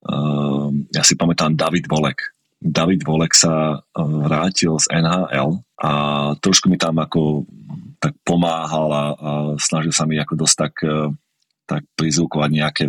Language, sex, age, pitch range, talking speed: Slovak, male, 30-49, 75-85 Hz, 145 wpm